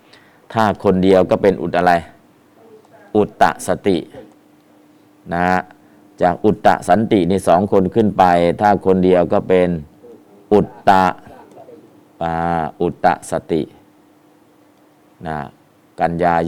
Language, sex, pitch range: Thai, male, 90-105 Hz